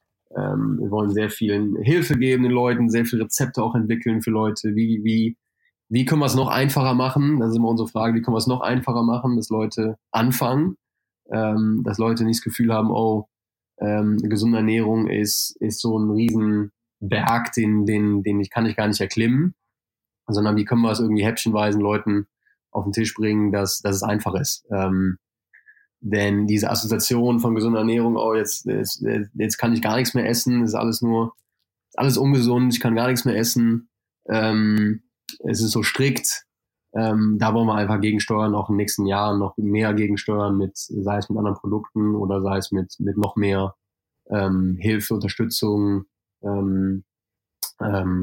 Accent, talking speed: German, 185 wpm